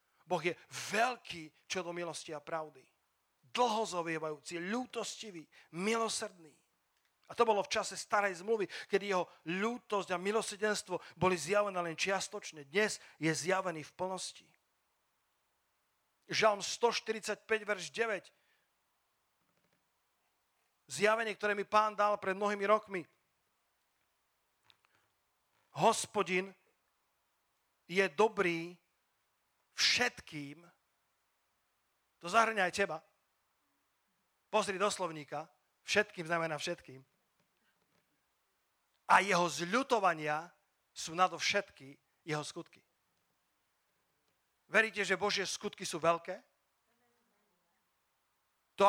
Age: 40-59